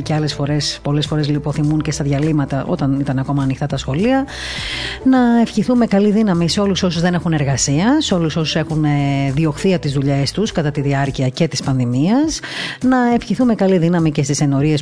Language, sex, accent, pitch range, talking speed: Greek, female, native, 140-195 Hz, 185 wpm